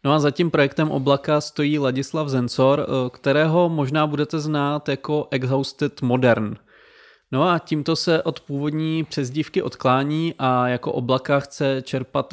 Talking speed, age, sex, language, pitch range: 135 wpm, 20-39, male, Czech, 125-150 Hz